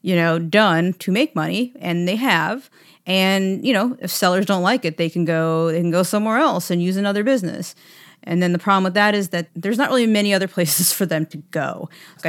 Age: 30-49